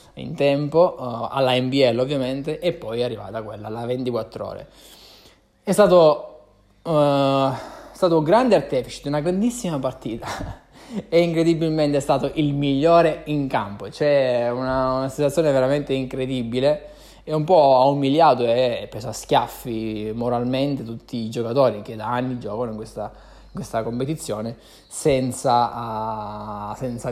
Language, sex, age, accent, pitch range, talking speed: Italian, male, 20-39, native, 120-145 Hz, 135 wpm